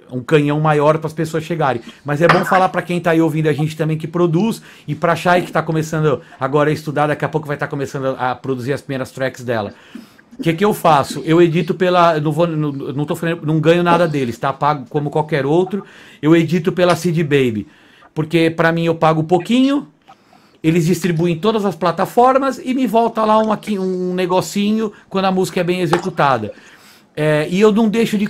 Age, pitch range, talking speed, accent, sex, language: 40-59, 155-190 Hz, 215 wpm, Brazilian, male, Portuguese